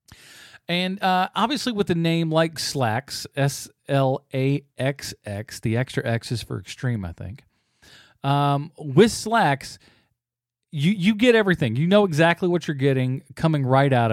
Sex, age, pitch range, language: male, 40-59, 120-170 Hz, English